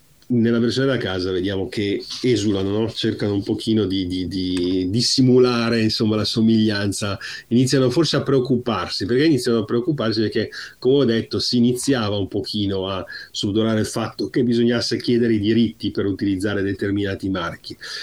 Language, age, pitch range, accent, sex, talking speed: Italian, 40-59, 105-130 Hz, native, male, 155 wpm